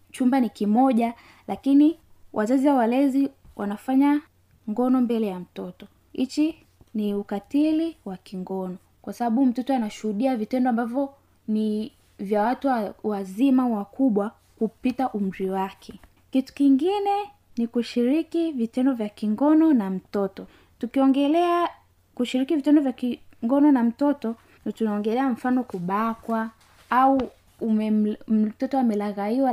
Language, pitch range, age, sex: Swahili, 215-275 Hz, 10-29, female